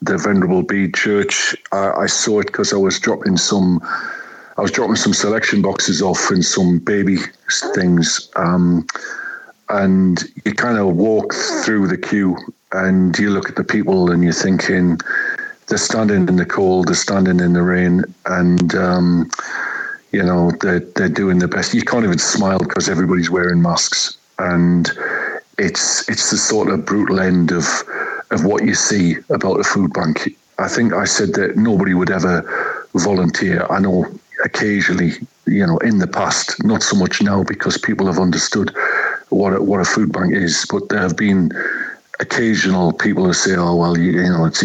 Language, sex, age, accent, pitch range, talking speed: English, male, 50-69, British, 85-95 Hz, 175 wpm